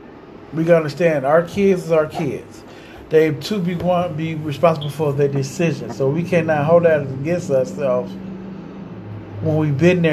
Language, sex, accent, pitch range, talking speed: English, male, American, 145-170 Hz, 170 wpm